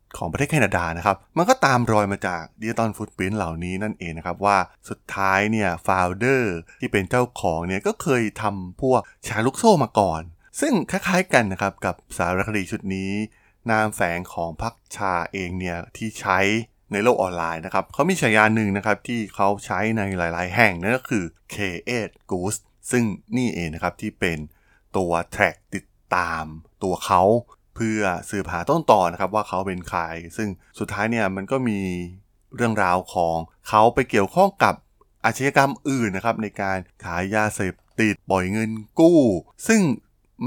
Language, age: Thai, 20-39